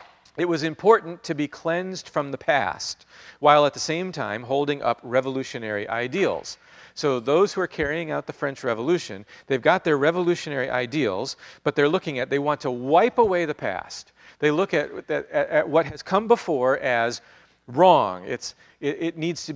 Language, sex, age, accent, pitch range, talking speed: English, male, 40-59, American, 110-165 Hz, 180 wpm